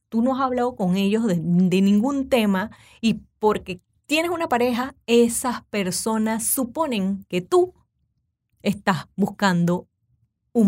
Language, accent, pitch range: Spanish, American, 190-250 Hz